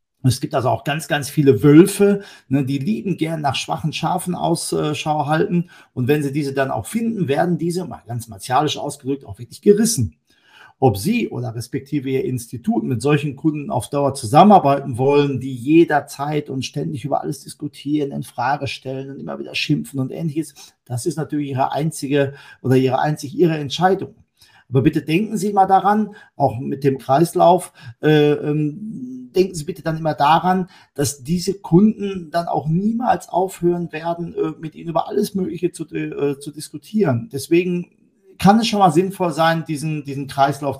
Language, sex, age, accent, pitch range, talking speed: German, male, 50-69, German, 140-175 Hz, 170 wpm